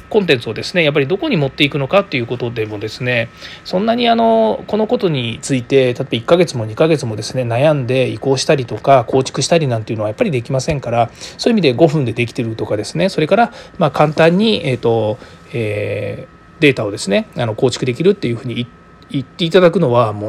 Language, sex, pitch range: Japanese, male, 120-190 Hz